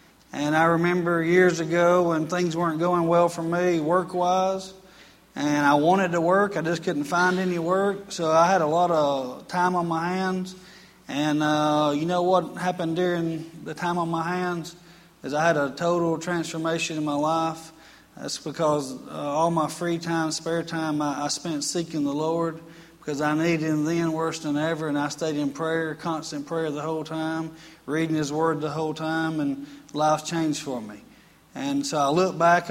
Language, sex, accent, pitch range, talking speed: English, male, American, 150-175 Hz, 190 wpm